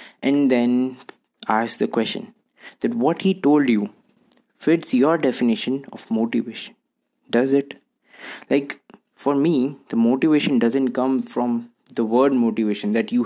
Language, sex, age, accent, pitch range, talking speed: Hindi, male, 20-39, native, 120-140 Hz, 135 wpm